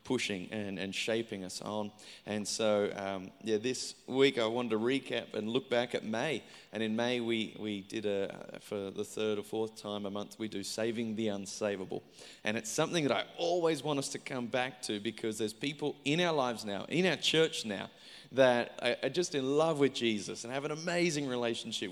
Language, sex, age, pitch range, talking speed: English, male, 20-39, 110-140 Hz, 210 wpm